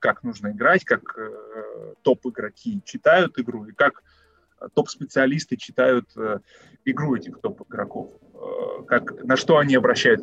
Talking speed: 110 wpm